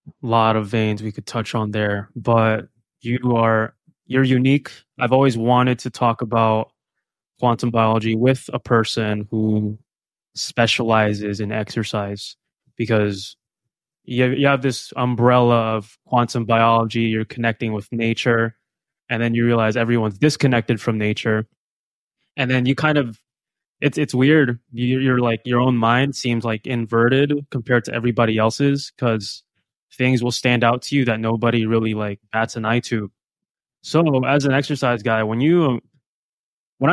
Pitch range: 110-130 Hz